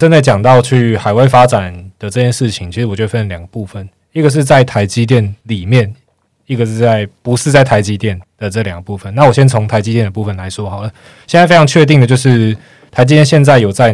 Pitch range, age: 100-125 Hz, 20-39